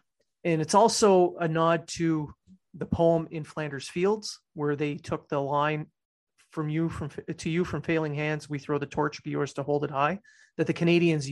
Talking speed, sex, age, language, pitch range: 195 wpm, male, 30-49, English, 150-180 Hz